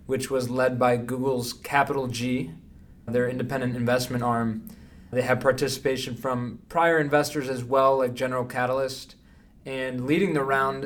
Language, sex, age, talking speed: English, male, 20-39, 145 wpm